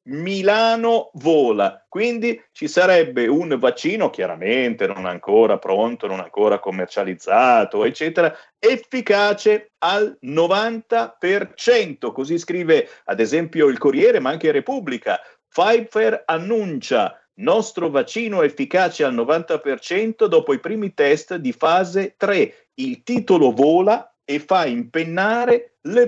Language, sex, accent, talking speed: Italian, male, native, 110 wpm